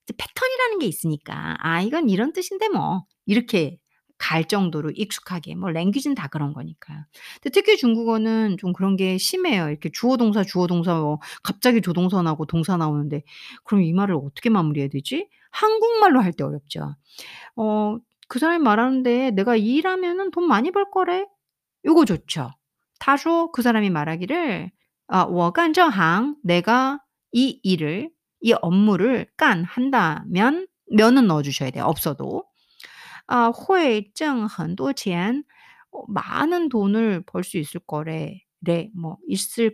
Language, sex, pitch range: Korean, female, 165-275 Hz